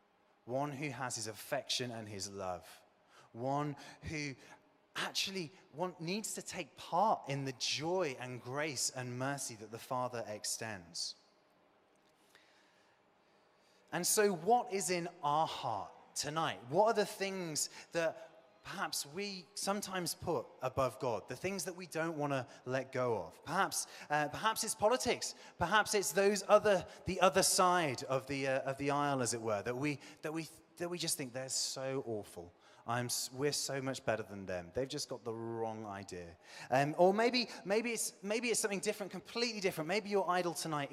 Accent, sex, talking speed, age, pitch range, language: British, male, 170 wpm, 30-49, 120-185 Hz, English